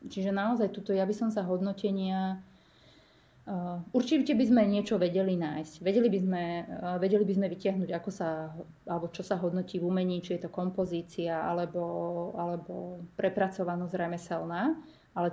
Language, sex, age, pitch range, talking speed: Slovak, female, 30-49, 180-210 Hz, 135 wpm